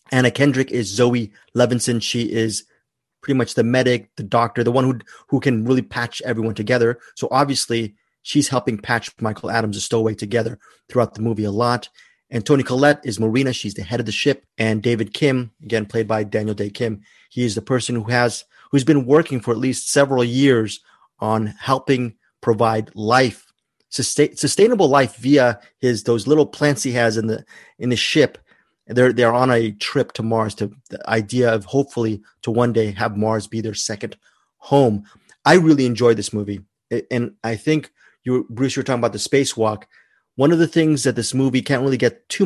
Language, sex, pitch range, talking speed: English, male, 115-140 Hz, 195 wpm